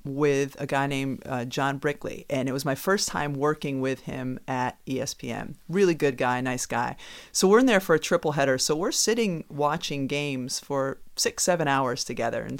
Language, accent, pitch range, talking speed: English, American, 135-170 Hz, 200 wpm